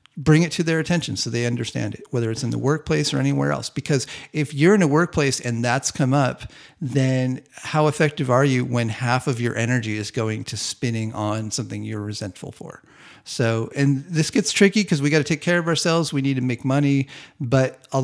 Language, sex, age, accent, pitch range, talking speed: English, male, 40-59, American, 115-145 Hz, 220 wpm